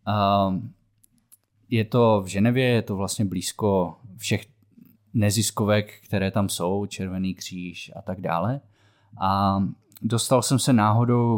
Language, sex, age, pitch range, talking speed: Czech, male, 20-39, 95-110 Hz, 125 wpm